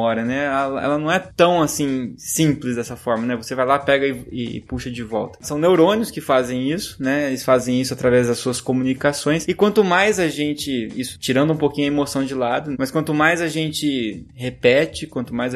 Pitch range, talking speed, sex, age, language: 125-165 Hz, 210 wpm, male, 20-39, Portuguese